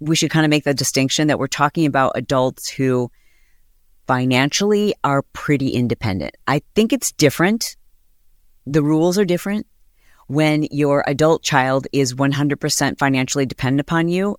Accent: American